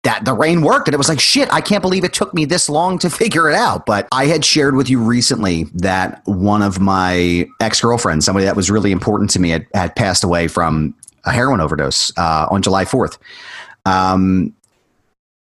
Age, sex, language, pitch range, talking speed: 30-49, male, English, 95-125 Hz, 205 wpm